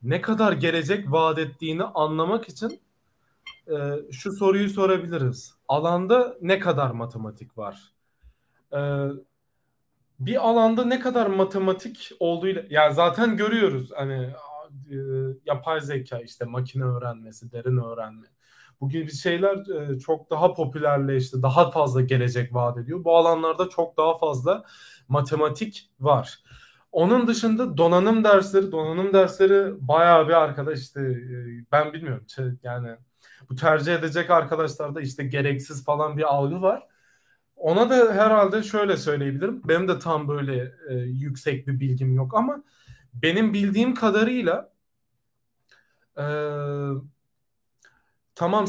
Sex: male